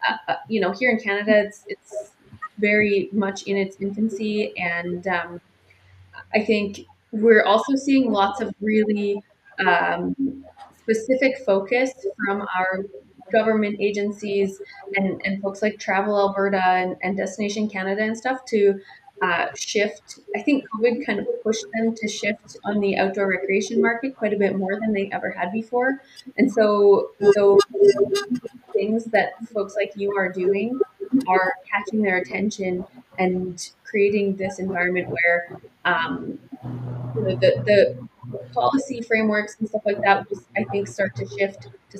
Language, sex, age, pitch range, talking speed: English, female, 20-39, 190-220 Hz, 150 wpm